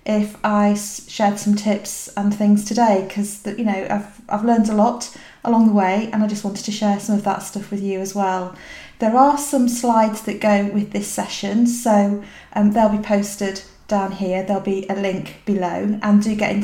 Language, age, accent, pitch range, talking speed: English, 40-59, British, 195-230 Hz, 210 wpm